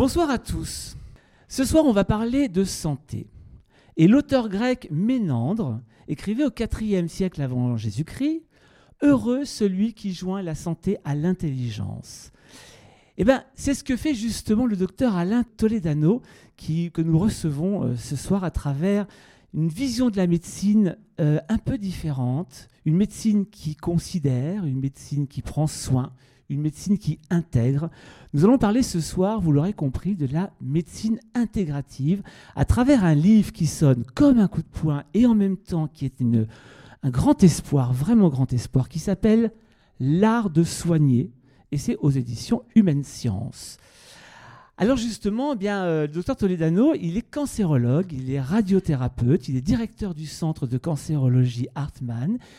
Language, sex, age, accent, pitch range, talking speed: French, male, 40-59, French, 140-215 Hz, 155 wpm